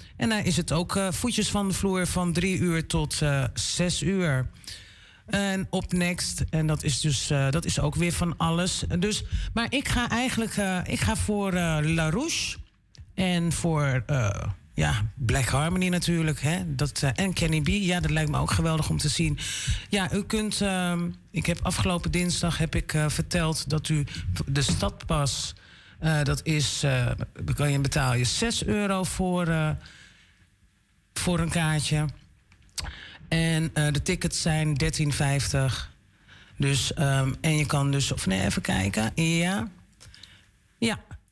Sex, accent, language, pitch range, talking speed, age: male, Dutch, Dutch, 135-175 Hz, 165 wpm, 40-59